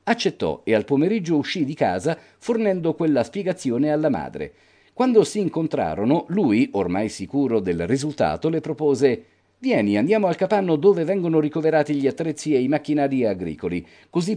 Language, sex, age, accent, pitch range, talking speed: Italian, male, 50-69, native, 125-175 Hz, 150 wpm